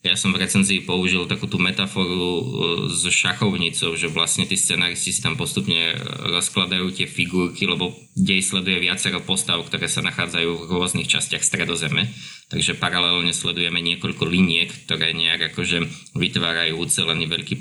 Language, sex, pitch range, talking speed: Slovak, male, 90-110 Hz, 140 wpm